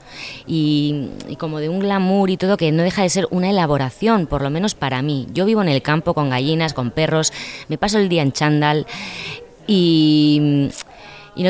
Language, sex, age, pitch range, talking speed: Spanish, female, 20-39, 135-165 Hz, 200 wpm